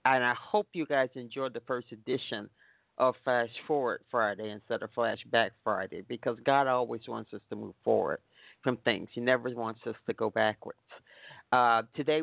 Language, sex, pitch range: English, male, 115-135 Hz